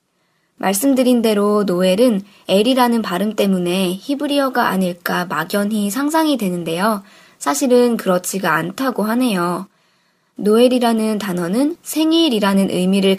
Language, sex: Korean, male